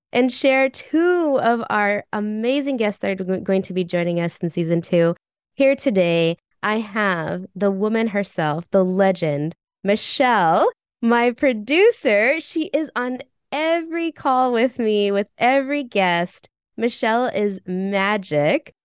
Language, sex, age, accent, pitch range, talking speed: English, female, 20-39, American, 190-255 Hz, 135 wpm